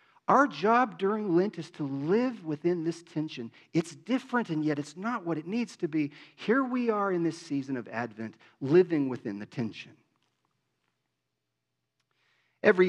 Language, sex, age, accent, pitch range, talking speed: English, male, 40-59, American, 130-165 Hz, 160 wpm